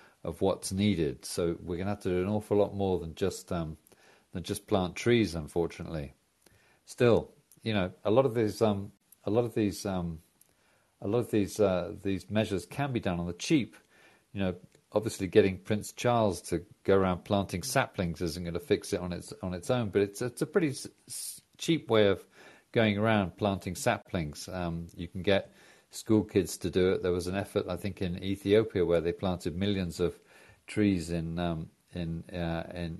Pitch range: 90-105 Hz